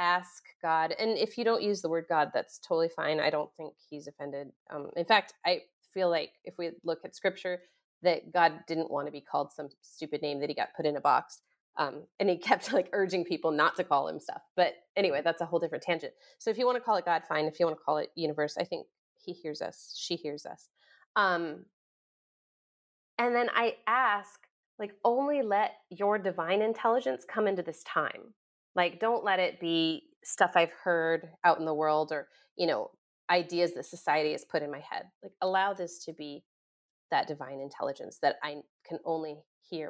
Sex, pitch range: female, 155-215 Hz